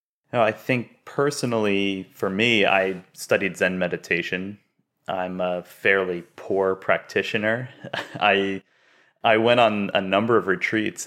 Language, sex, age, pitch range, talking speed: English, male, 30-49, 90-100 Hz, 125 wpm